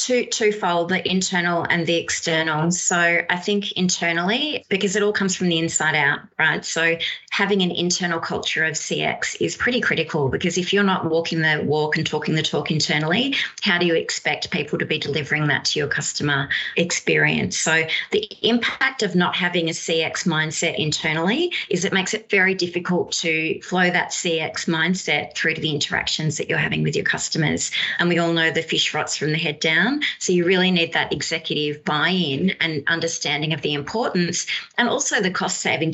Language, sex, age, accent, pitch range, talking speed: English, female, 20-39, Australian, 155-190 Hz, 190 wpm